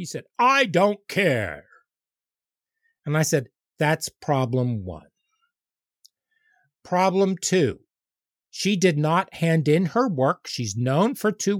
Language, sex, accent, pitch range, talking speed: English, male, American, 135-200 Hz, 125 wpm